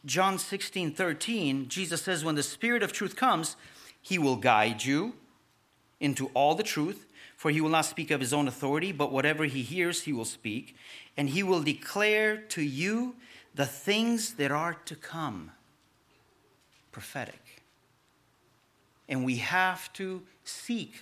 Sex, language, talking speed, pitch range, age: male, English, 150 wpm, 140-180 Hz, 40-59